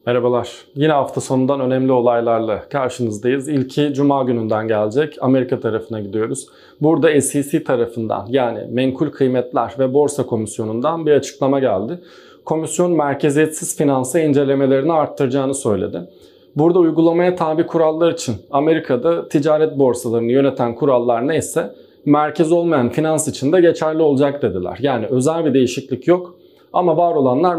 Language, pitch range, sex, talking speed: Turkish, 130-160 Hz, male, 130 wpm